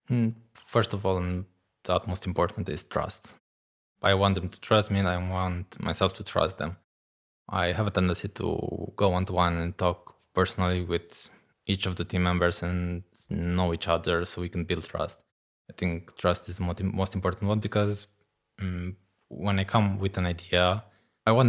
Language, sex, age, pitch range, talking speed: English, male, 20-39, 85-105 Hz, 185 wpm